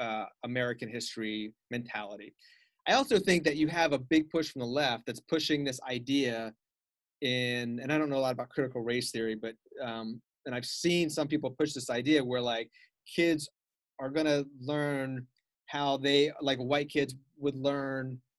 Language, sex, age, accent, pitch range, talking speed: English, male, 30-49, American, 125-155 Hz, 175 wpm